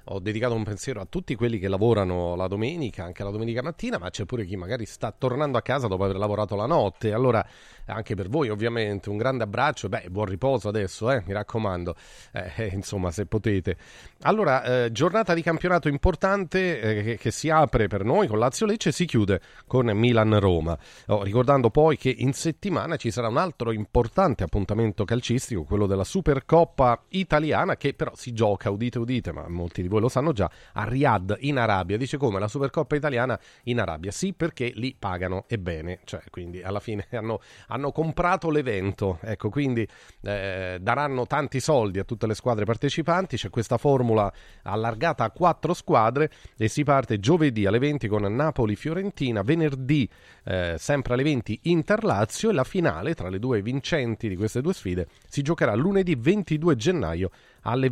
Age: 30-49